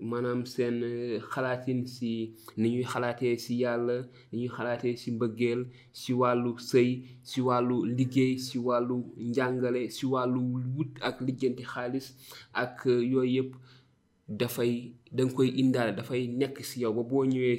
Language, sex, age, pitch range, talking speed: French, male, 30-49, 115-130 Hz, 145 wpm